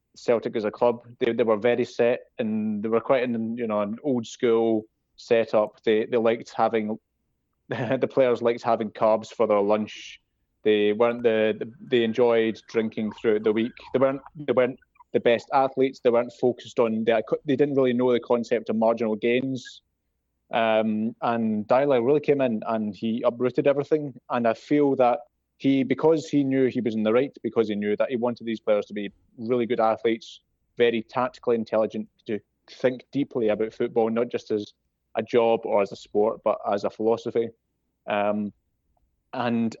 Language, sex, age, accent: English, male, 20-39, British